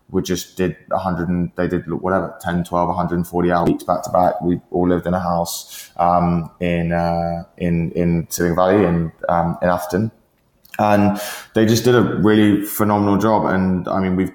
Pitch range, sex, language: 85-95 Hz, male, English